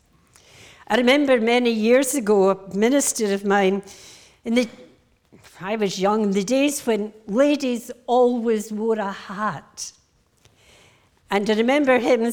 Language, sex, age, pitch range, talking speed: English, female, 60-79, 210-265 Hz, 130 wpm